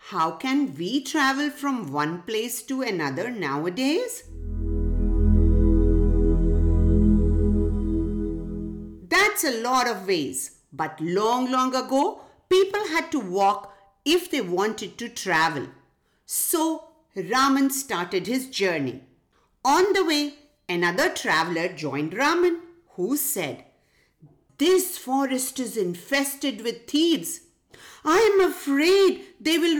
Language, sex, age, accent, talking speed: English, female, 50-69, Indian, 105 wpm